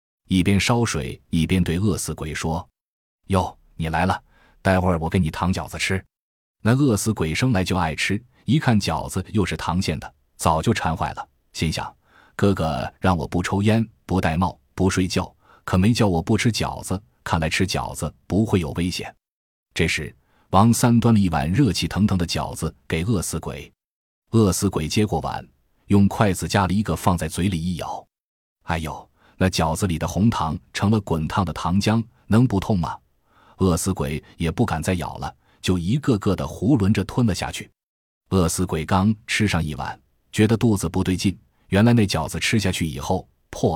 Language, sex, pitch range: Chinese, male, 80-105 Hz